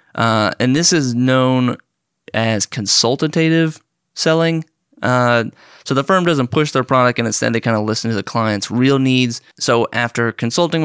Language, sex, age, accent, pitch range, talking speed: English, male, 20-39, American, 110-130 Hz, 165 wpm